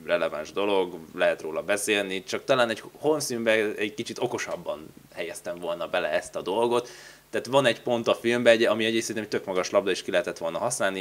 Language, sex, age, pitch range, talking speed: Hungarian, male, 20-39, 100-120 Hz, 190 wpm